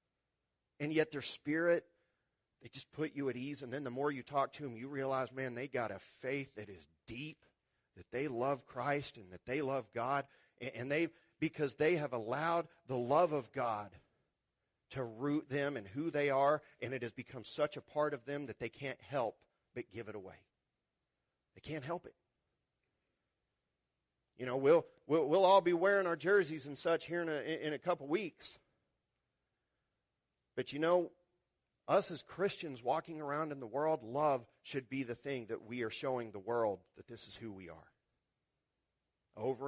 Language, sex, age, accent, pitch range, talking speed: English, male, 40-59, American, 130-170 Hz, 190 wpm